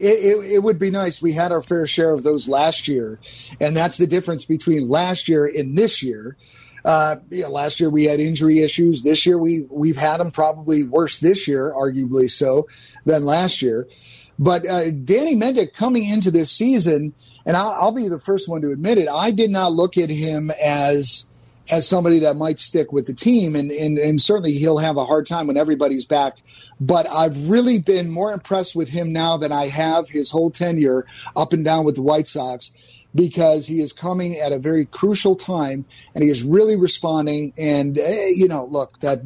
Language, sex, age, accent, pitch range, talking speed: English, male, 50-69, American, 145-175 Hz, 210 wpm